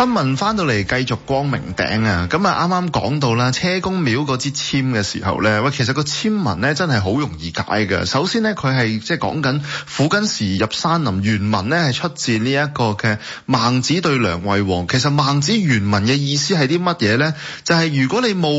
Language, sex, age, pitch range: Chinese, male, 20-39, 110-160 Hz